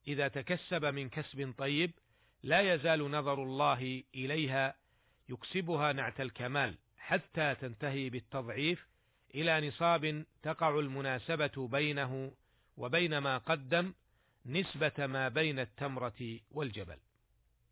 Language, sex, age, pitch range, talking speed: Arabic, male, 50-69, 125-150 Hz, 100 wpm